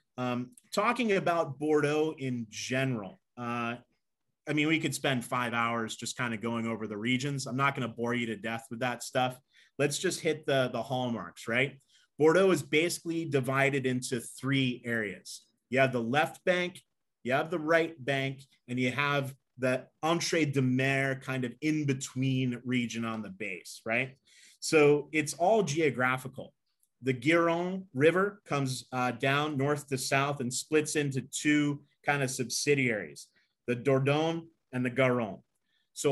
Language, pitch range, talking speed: English, 125-155 Hz, 165 wpm